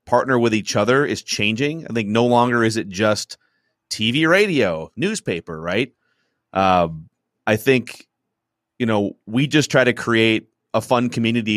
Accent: American